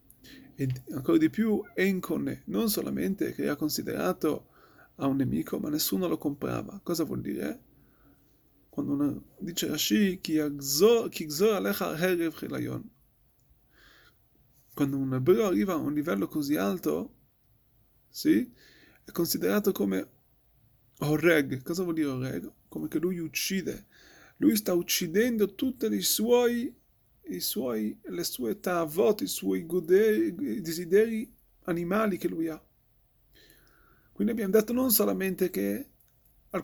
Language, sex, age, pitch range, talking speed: Italian, male, 30-49, 160-215 Hz, 120 wpm